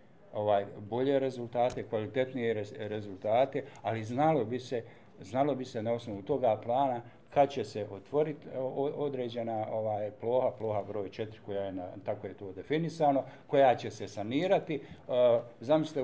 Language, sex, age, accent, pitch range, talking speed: Croatian, male, 50-69, Bosnian, 115-145 Hz, 145 wpm